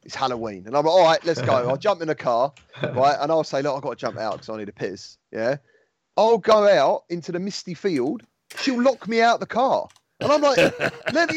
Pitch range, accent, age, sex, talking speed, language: 115-180 Hz, British, 30-49, male, 260 wpm, English